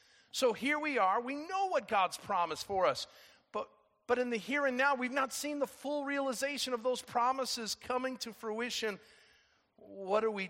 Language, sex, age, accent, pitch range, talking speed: English, male, 50-69, American, 180-245 Hz, 190 wpm